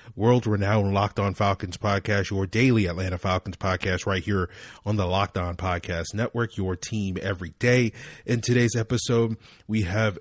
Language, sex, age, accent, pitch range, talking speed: English, male, 30-49, American, 105-125 Hz, 160 wpm